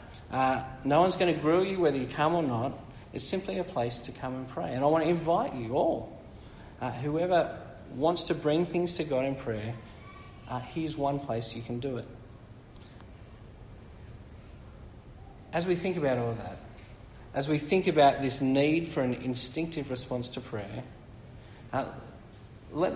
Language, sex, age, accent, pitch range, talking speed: English, male, 50-69, Australian, 115-155 Hz, 175 wpm